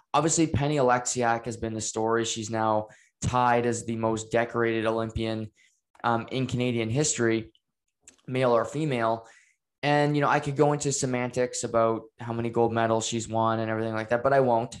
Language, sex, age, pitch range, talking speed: English, male, 20-39, 115-140 Hz, 180 wpm